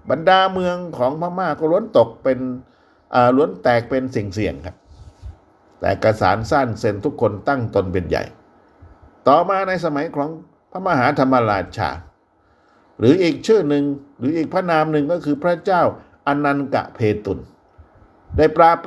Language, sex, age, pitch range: Thai, male, 60-79, 110-165 Hz